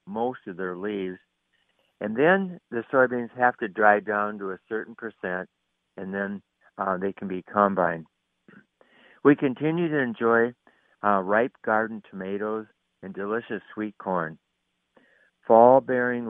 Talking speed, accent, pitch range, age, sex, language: 135 wpm, American, 95-115 Hz, 60-79, male, English